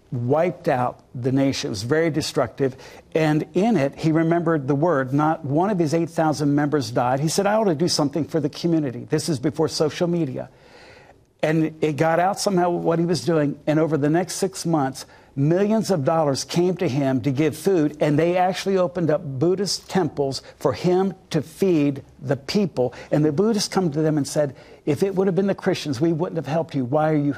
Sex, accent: male, American